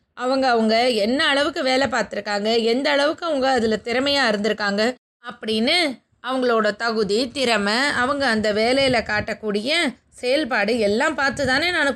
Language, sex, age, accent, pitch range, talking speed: Tamil, female, 20-39, native, 220-285 Hz, 120 wpm